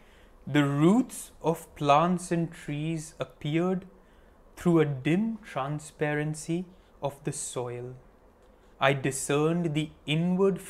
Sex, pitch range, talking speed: male, 120-165 Hz, 100 wpm